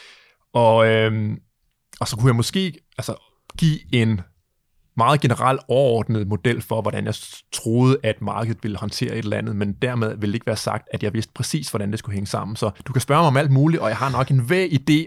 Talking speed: 225 wpm